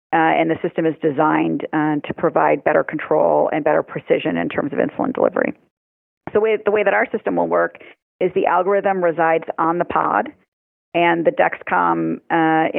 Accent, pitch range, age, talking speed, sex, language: American, 155-180 Hz, 40-59, 180 wpm, female, English